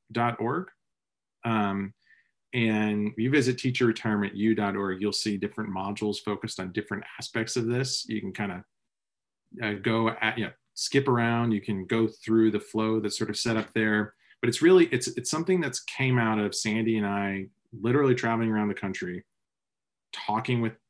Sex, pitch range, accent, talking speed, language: male, 100-115 Hz, American, 175 wpm, English